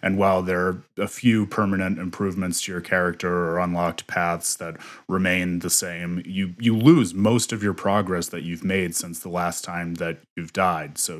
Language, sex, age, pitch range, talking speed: English, male, 30-49, 90-120 Hz, 195 wpm